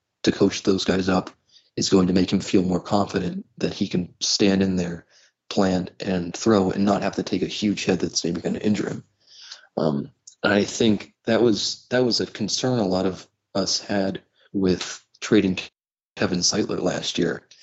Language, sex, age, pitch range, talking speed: English, male, 30-49, 95-100 Hz, 190 wpm